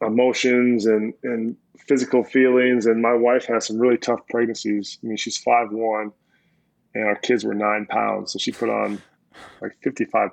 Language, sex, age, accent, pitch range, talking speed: English, male, 20-39, American, 115-125 Hz, 175 wpm